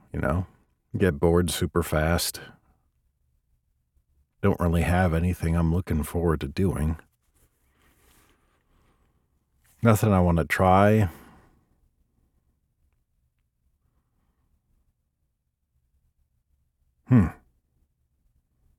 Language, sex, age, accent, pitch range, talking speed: English, male, 50-69, American, 65-85 Hz, 65 wpm